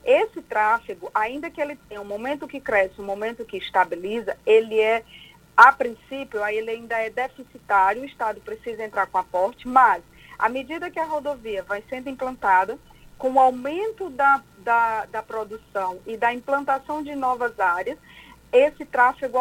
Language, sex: Portuguese, female